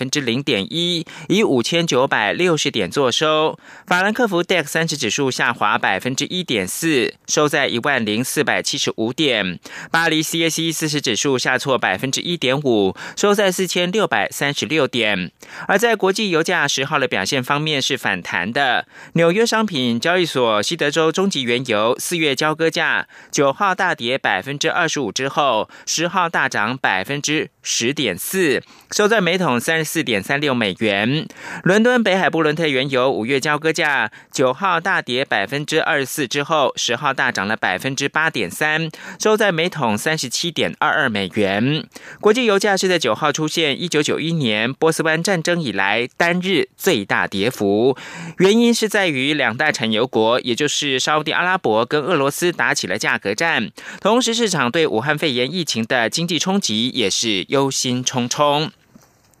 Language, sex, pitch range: German, male, 130-175 Hz